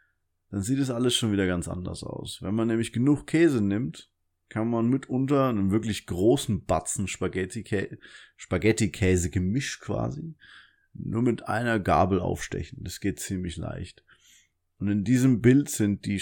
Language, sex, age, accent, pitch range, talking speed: German, male, 30-49, German, 90-115 Hz, 150 wpm